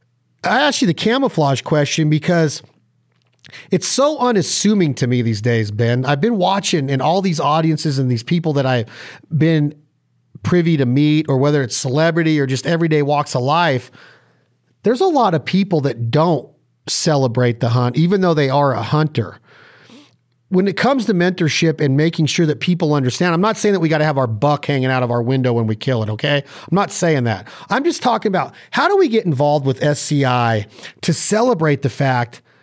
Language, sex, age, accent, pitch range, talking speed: English, male, 40-59, American, 135-190 Hz, 195 wpm